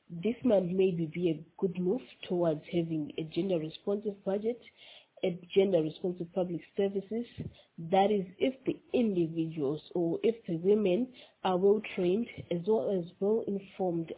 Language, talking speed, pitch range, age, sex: English, 150 wpm, 170-205 Hz, 30-49, female